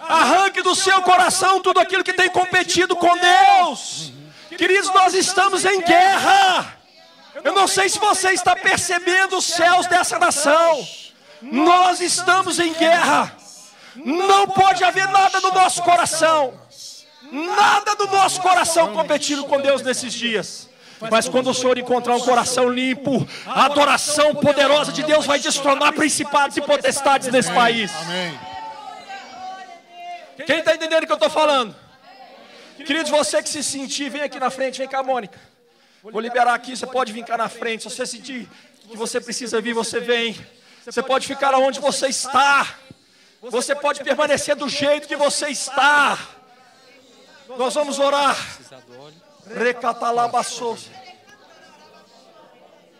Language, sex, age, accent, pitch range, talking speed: Portuguese, male, 40-59, Brazilian, 245-350 Hz, 140 wpm